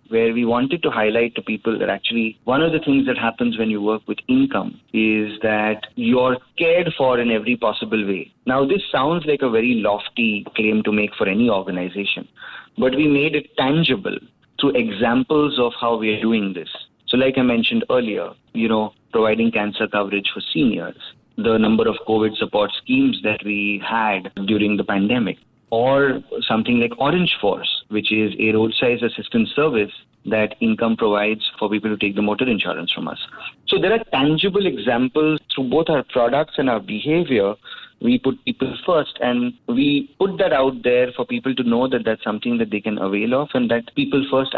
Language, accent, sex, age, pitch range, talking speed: English, Indian, male, 30-49, 110-135 Hz, 190 wpm